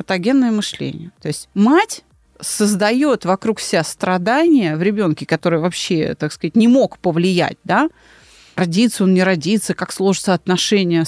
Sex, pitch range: female, 170-220 Hz